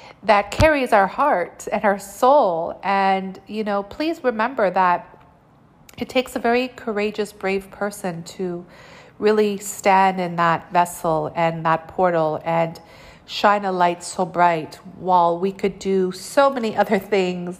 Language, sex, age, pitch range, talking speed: English, female, 40-59, 175-225 Hz, 145 wpm